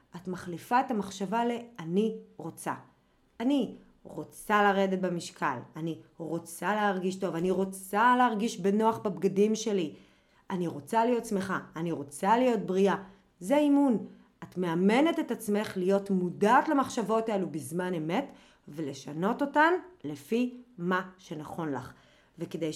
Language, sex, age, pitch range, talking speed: Hebrew, female, 30-49, 170-225 Hz, 125 wpm